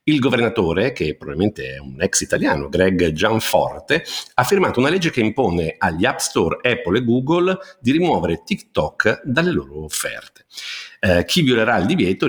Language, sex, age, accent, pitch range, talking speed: Italian, male, 50-69, native, 80-115 Hz, 160 wpm